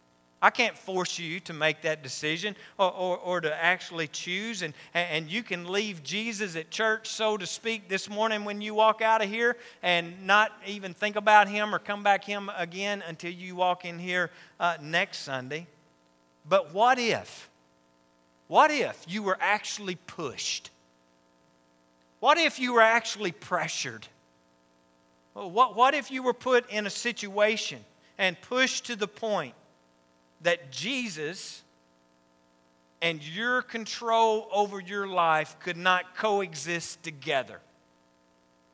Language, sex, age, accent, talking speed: English, male, 50-69, American, 145 wpm